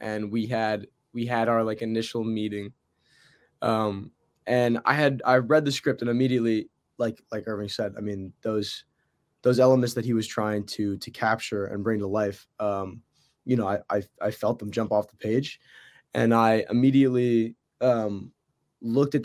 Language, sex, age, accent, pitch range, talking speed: English, male, 20-39, American, 110-125 Hz, 180 wpm